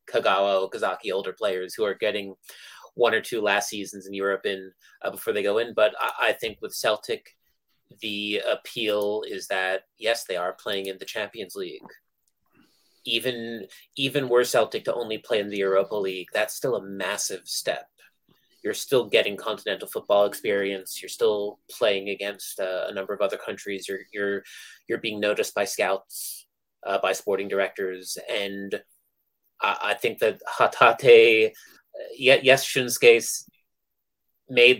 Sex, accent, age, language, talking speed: male, American, 30-49, English, 155 wpm